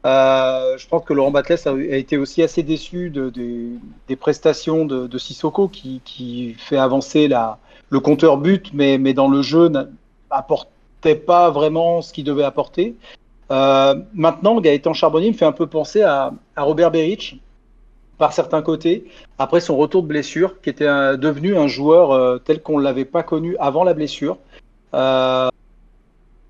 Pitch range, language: 135-165 Hz, French